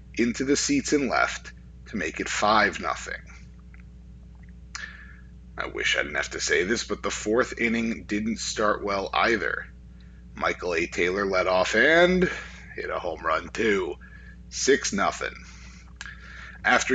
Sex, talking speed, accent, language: male, 140 wpm, American, English